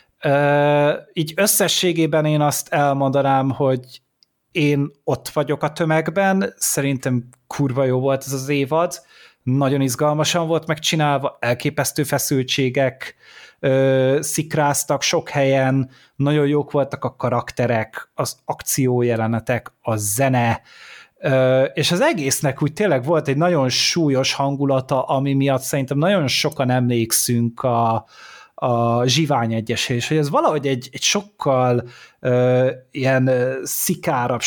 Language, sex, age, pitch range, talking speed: Hungarian, male, 30-49, 120-145 Hz, 110 wpm